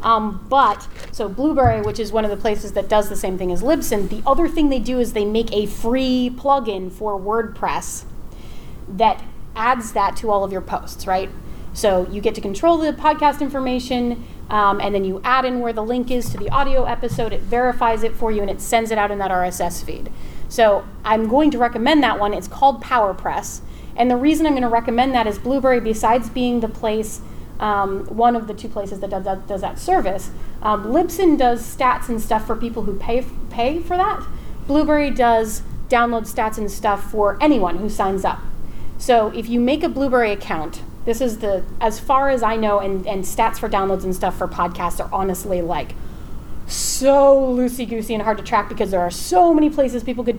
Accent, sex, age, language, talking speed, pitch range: American, female, 30-49, English, 205 wpm, 205-255 Hz